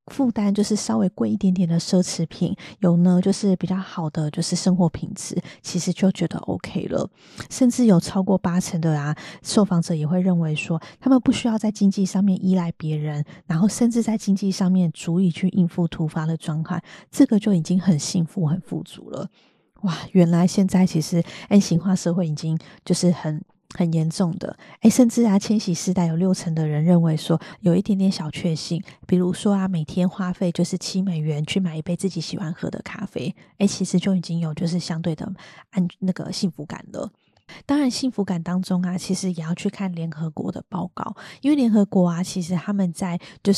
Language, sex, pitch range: Chinese, female, 170-195 Hz